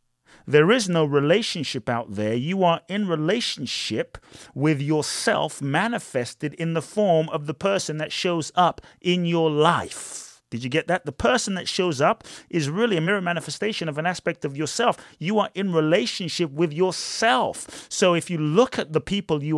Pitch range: 135-180 Hz